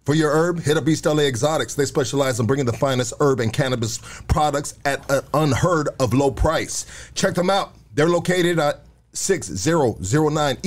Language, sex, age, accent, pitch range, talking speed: English, male, 40-59, American, 135-180 Hz, 175 wpm